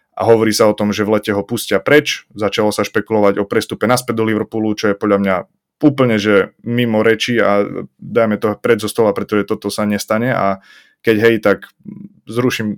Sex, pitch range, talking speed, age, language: male, 105-125 Hz, 195 wpm, 20-39, Slovak